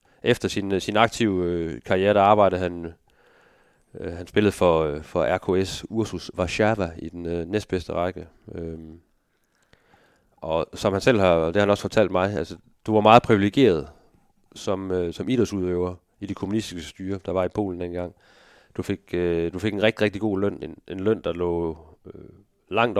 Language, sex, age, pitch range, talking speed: Danish, male, 30-49, 85-105 Hz, 180 wpm